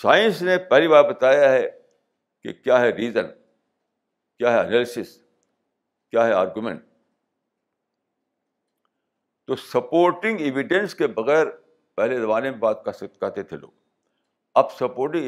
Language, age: Urdu, 60-79